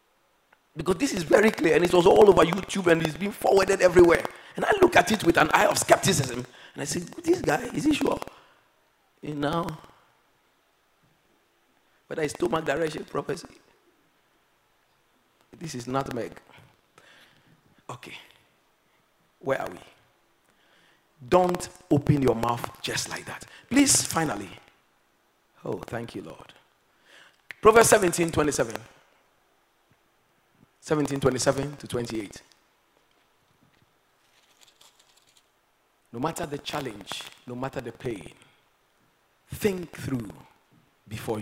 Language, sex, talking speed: English, male, 115 wpm